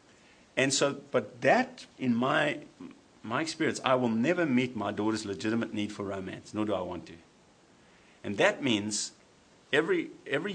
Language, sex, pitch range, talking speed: English, male, 100-130 Hz, 160 wpm